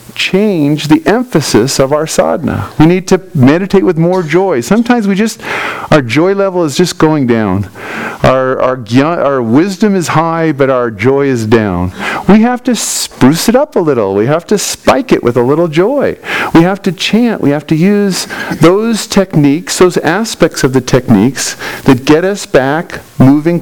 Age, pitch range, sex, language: 50-69, 135-200 Hz, male, English